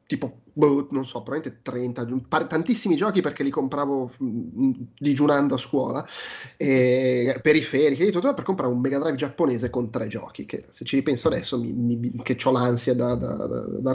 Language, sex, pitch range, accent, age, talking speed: Italian, male, 125-165 Hz, native, 30-49, 185 wpm